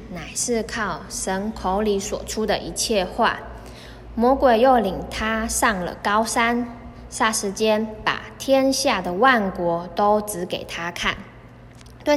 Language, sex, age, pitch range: Chinese, female, 20-39, 185-250 Hz